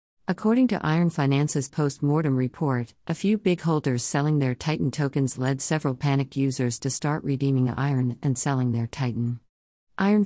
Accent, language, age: American, English, 50-69